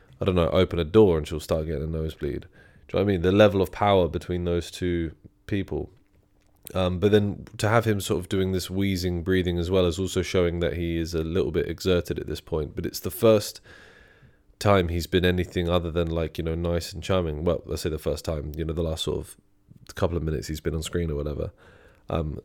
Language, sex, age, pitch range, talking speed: English, male, 20-39, 85-100 Hz, 245 wpm